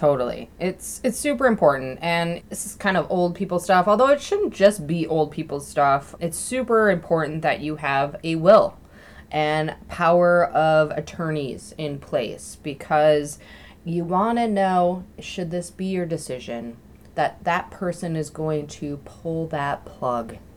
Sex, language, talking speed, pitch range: female, English, 160 wpm, 145-180 Hz